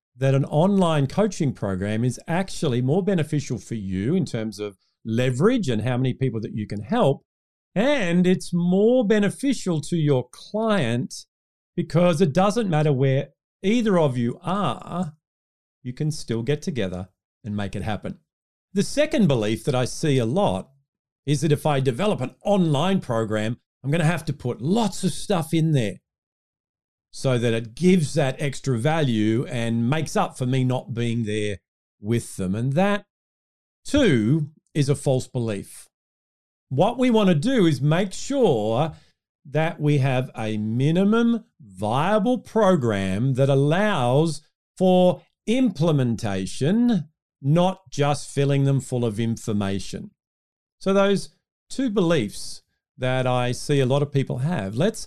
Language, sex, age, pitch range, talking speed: English, male, 40-59, 120-185 Hz, 150 wpm